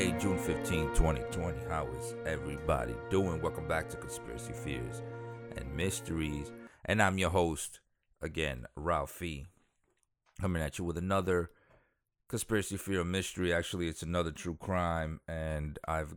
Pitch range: 80-95 Hz